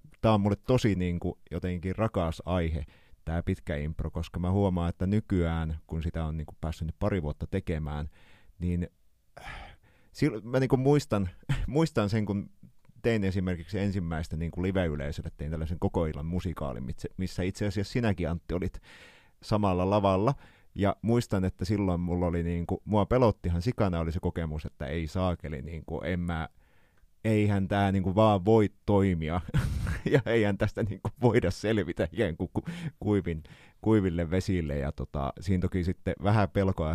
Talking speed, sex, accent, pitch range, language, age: 150 wpm, male, native, 80-105 Hz, Finnish, 30-49